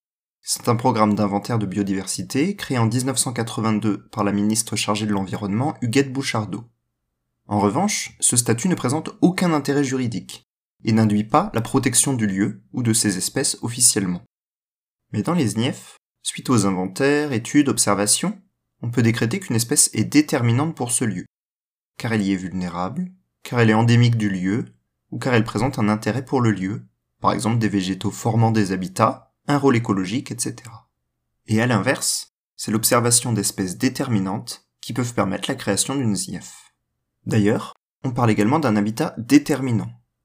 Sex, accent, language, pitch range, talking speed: male, French, French, 100-135 Hz, 160 wpm